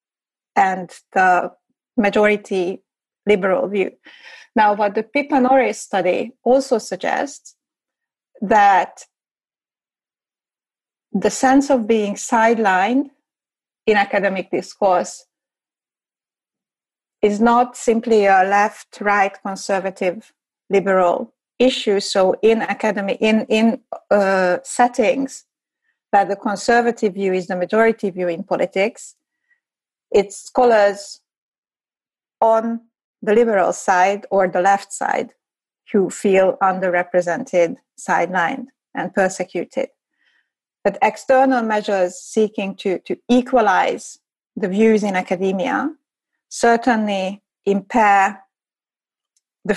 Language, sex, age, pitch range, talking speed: English, female, 30-49, 195-245 Hz, 95 wpm